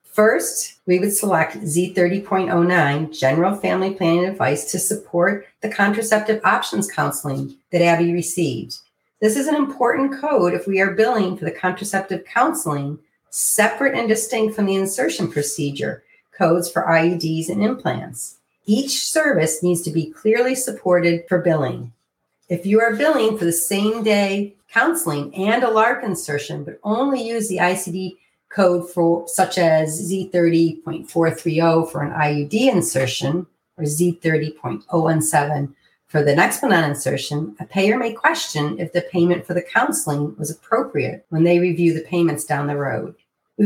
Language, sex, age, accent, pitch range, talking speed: English, female, 40-59, American, 165-210 Hz, 145 wpm